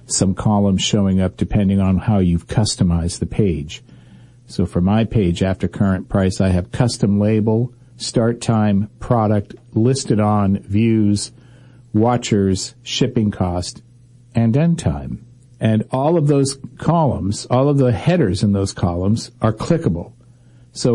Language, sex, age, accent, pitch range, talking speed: English, male, 50-69, American, 105-125 Hz, 140 wpm